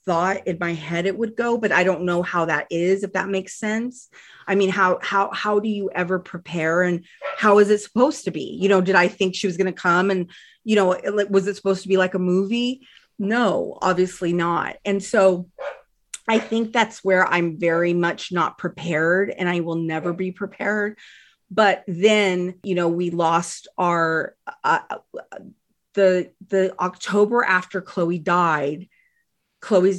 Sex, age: female, 30-49